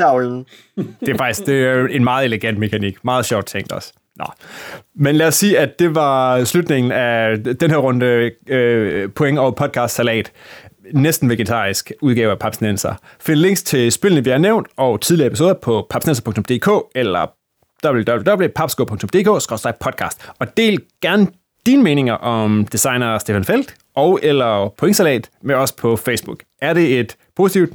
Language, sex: Danish, male